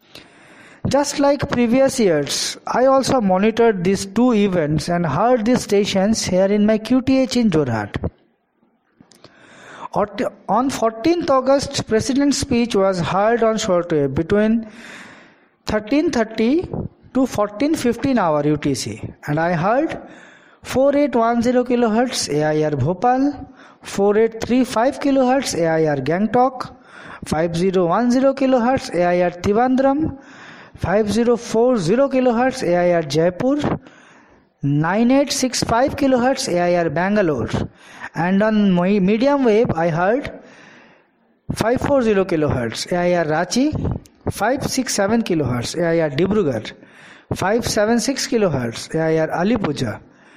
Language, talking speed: English, 105 wpm